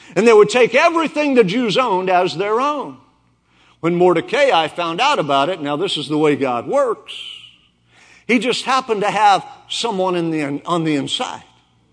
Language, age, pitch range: English, 50-69, 180-255 Hz